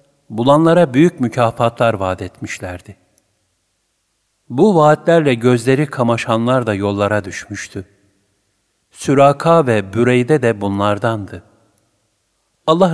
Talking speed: 85 wpm